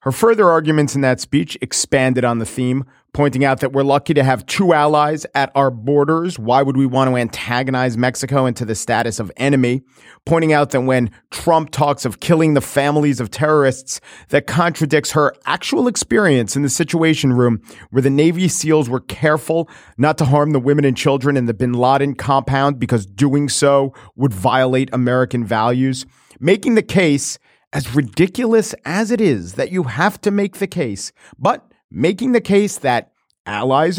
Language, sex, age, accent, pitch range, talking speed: English, male, 40-59, American, 125-155 Hz, 180 wpm